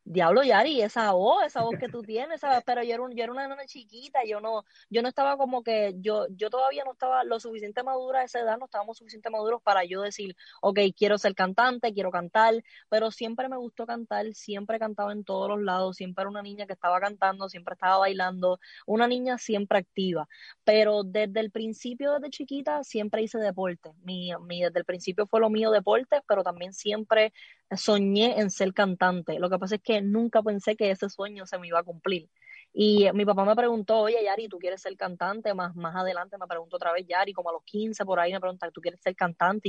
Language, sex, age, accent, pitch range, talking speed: English, female, 20-39, American, 185-225 Hz, 220 wpm